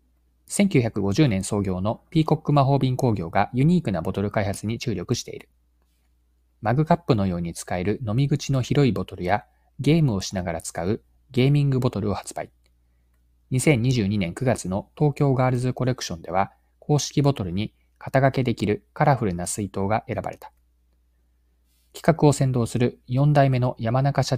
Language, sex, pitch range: Japanese, male, 80-135 Hz